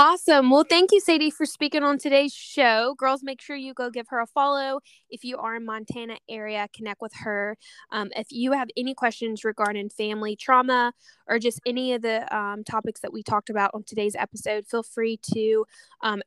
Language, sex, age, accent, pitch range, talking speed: English, female, 10-29, American, 210-255 Hz, 205 wpm